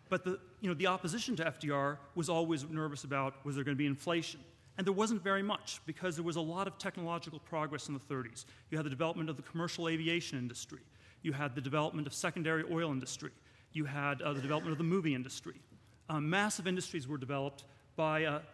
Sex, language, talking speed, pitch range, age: male, English, 210 wpm, 145-180 Hz, 40-59